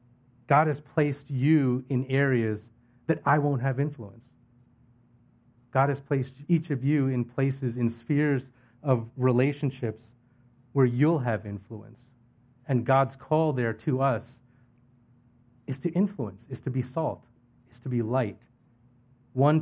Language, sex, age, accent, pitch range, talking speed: English, male, 40-59, American, 120-135 Hz, 140 wpm